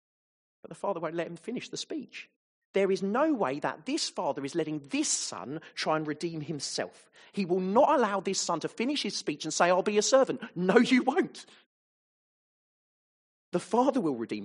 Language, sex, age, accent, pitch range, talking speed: English, male, 30-49, British, 135-200 Hz, 195 wpm